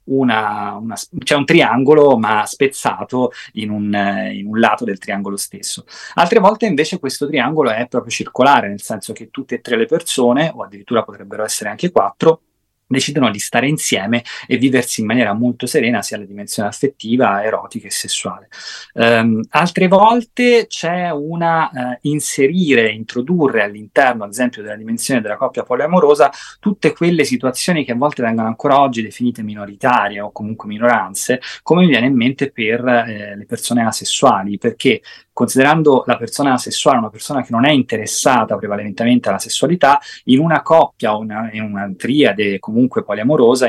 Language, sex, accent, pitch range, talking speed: Italian, male, native, 110-145 Hz, 155 wpm